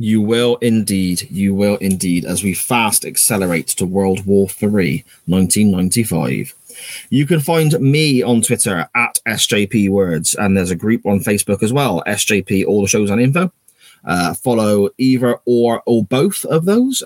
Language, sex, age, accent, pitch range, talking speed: English, male, 20-39, British, 100-130 Hz, 160 wpm